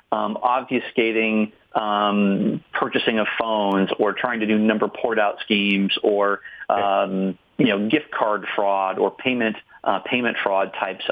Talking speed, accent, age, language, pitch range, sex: 140 wpm, American, 40-59, English, 105-125 Hz, male